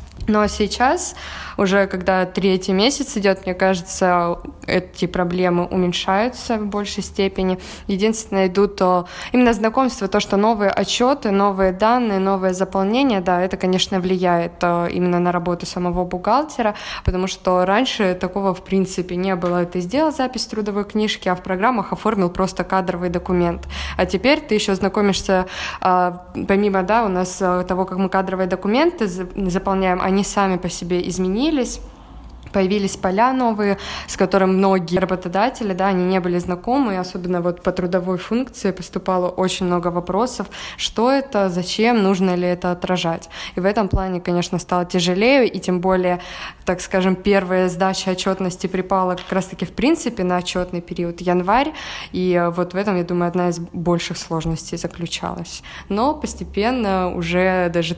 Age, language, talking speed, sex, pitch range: 20-39, Russian, 150 wpm, female, 180-205 Hz